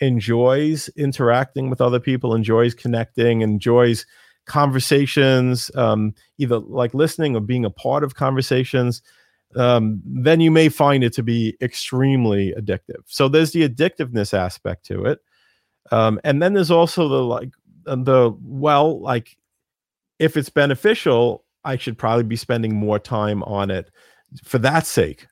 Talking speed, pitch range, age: 145 wpm, 105-135 Hz, 40-59